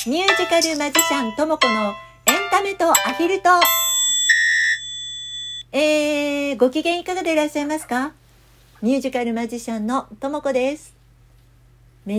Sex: female